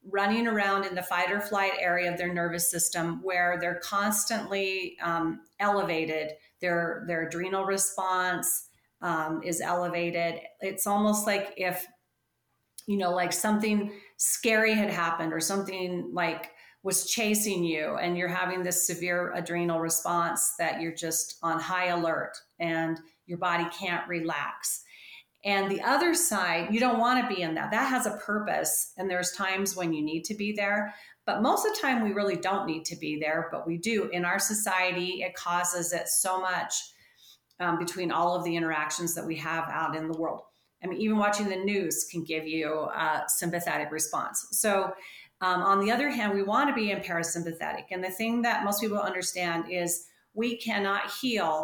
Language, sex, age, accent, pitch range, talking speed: English, female, 40-59, American, 170-200 Hz, 180 wpm